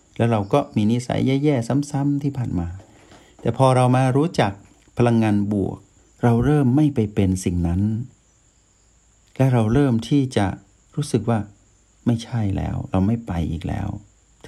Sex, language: male, Thai